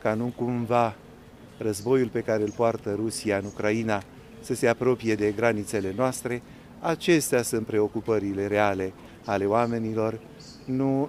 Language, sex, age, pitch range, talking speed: Romanian, male, 30-49, 105-130 Hz, 130 wpm